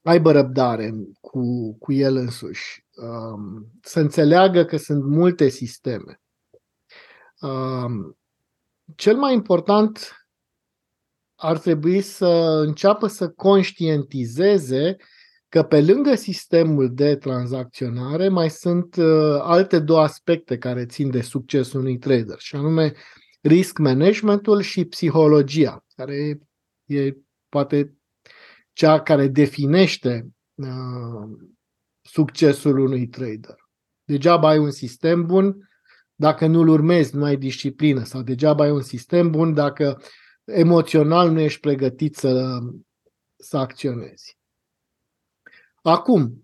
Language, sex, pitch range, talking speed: Romanian, male, 135-170 Hz, 110 wpm